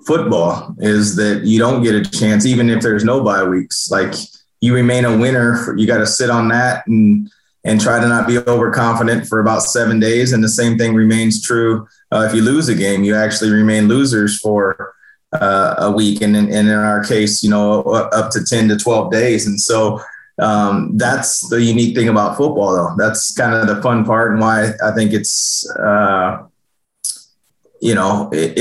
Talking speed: 195 wpm